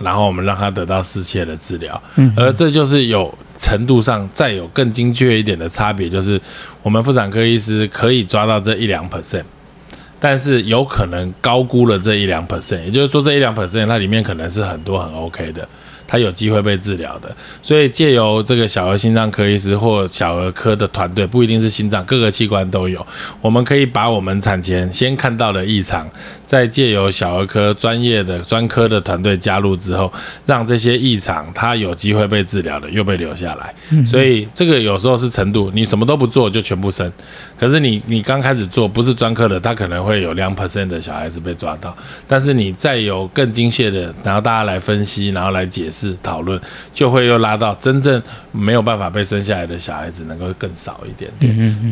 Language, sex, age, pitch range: Chinese, male, 20-39, 95-120 Hz